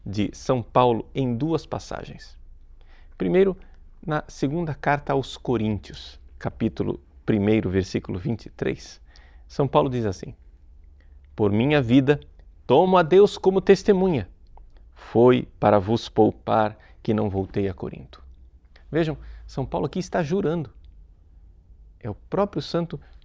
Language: Portuguese